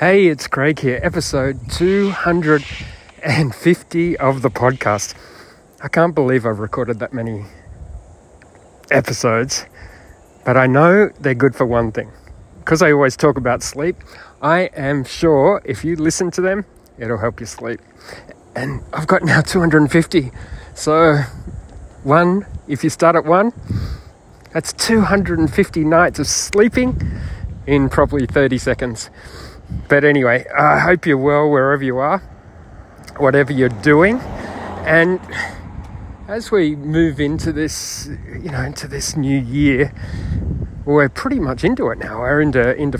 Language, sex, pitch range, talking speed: English, male, 115-160 Hz, 140 wpm